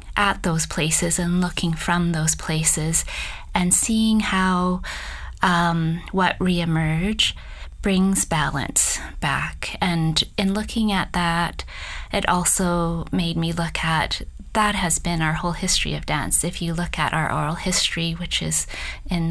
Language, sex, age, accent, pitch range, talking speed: English, female, 20-39, American, 115-175 Hz, 145 wpm